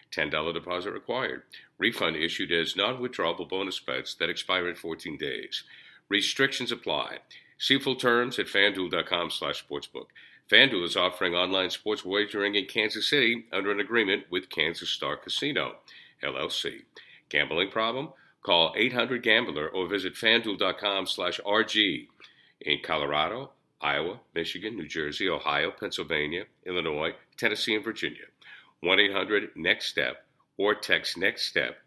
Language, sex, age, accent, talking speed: English, male, 50-69, American, 130 wpm